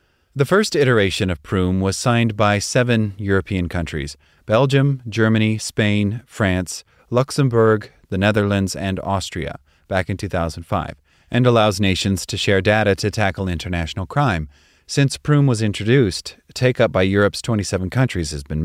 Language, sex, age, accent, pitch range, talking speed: English, male, 30-49, American, 90-115 Hz, 140 wpm